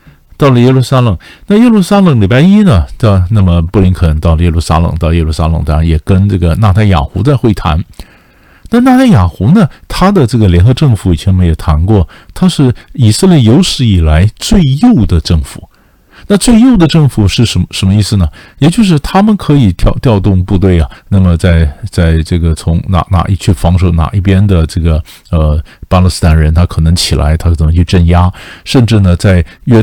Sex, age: male, 50-69